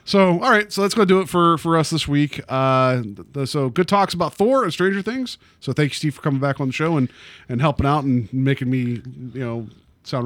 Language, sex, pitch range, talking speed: English, male, 120-150 Hz, 255 wpm